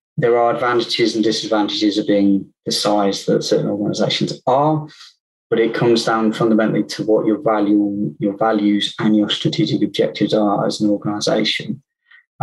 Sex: male